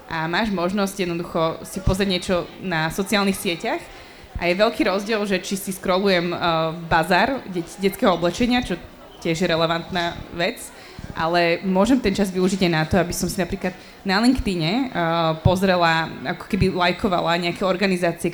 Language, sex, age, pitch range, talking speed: Slovak, female, 20-39, 175-205 Hz, 155 wpm